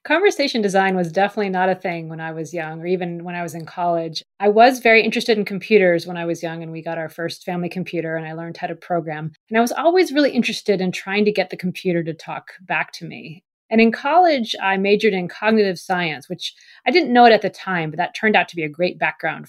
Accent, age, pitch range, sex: American, 30-49, 170-220 Hz, female